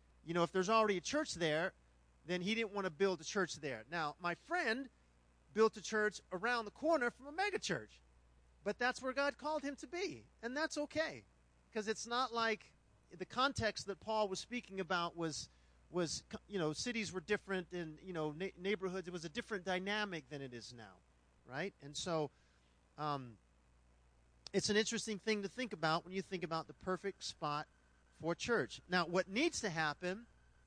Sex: male